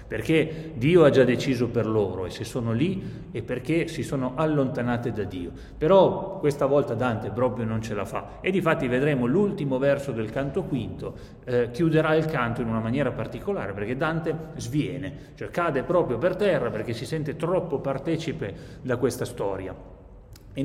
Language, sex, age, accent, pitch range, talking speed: Italian, male, 30-49, native, 115-160 Hz, 175 wpm